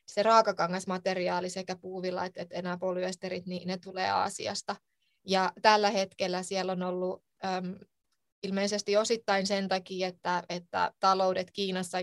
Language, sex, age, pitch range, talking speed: Finnish, female, 20-39, 180-195 Hz, 130 wpm